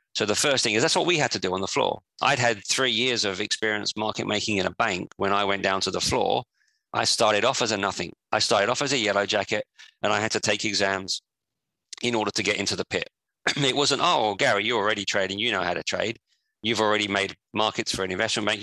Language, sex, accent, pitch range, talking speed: English, male, British, 95-110 Hz, 250 wpm